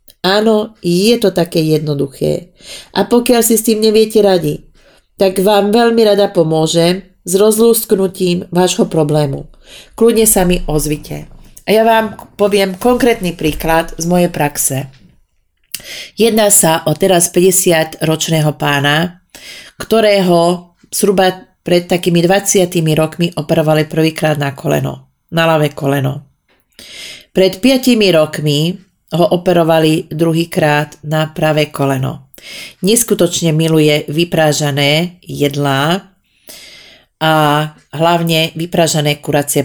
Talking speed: 105 wpm